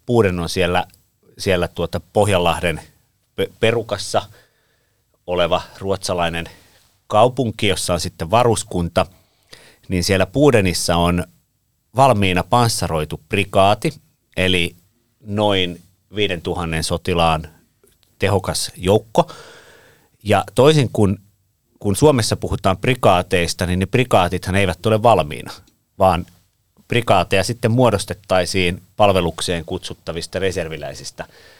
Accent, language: native, Finnish